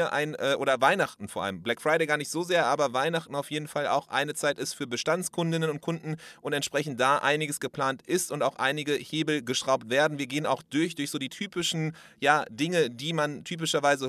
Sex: male